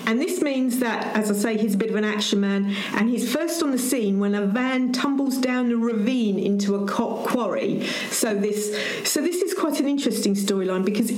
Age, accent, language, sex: 50-69, British, English, female